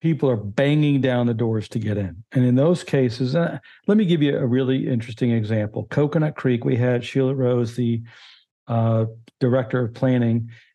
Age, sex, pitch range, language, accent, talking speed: 50-69, male, 120-145 Hz, English, American, 185 wpm